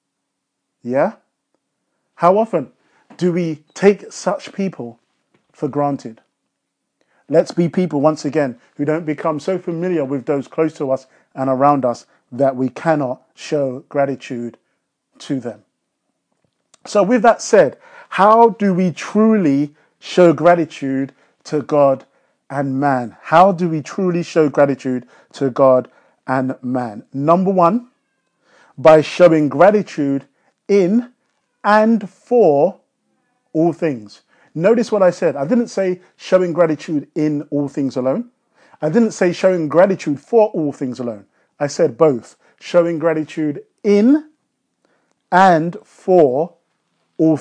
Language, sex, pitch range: English, male, 140-190 Hz